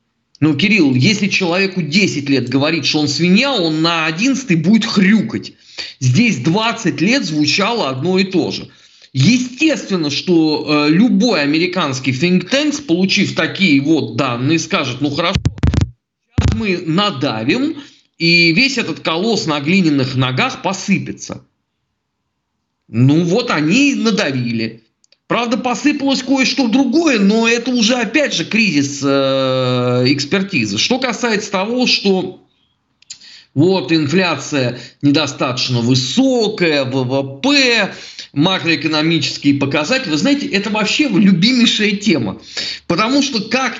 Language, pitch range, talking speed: Russian, 150-230 Hz, 110 wpm